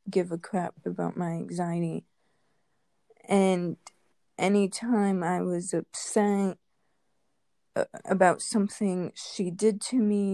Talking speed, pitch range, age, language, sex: 100 wpm, 180-205 Hz, 20-39, English, female